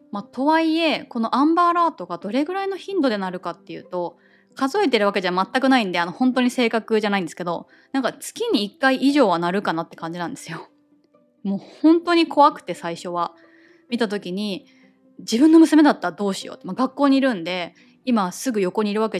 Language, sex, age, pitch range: Japanese, female, 20-39, 180-285 Hz